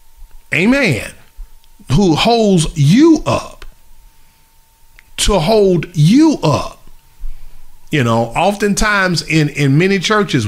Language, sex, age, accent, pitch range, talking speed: English, male, 40-59, American, 140-200 Hz, 95 wpm